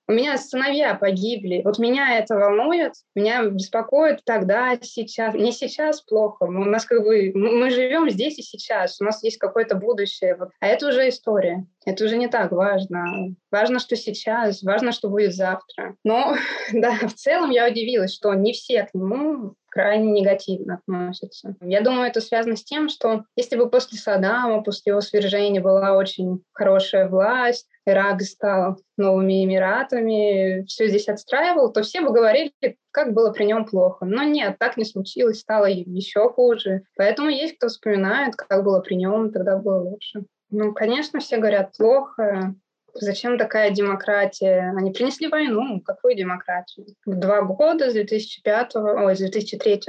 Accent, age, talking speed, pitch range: native, 20-39, 155 wpm, 195-240 Hz